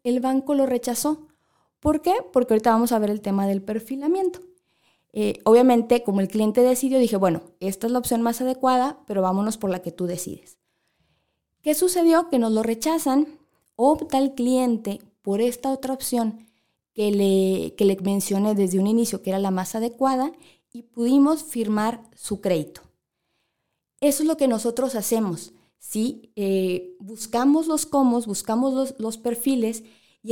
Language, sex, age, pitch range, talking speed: Spanish, female, 20-39, 210-260 Hz, 165 wpm